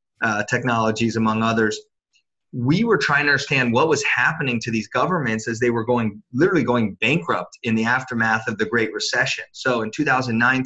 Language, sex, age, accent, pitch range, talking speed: English, male, 30-49, American, 115-135 Hz, 180 wpm